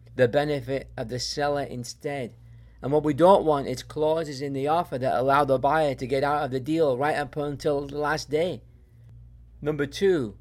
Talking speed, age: 195 wpm, 50-69